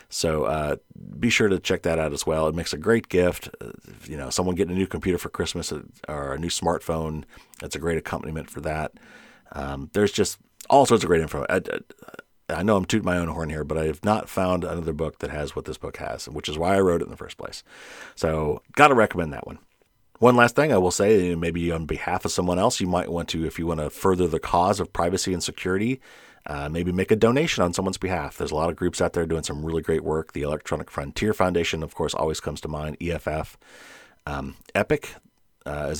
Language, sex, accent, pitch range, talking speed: English, male, American, 80-95 Hz, 240 wpm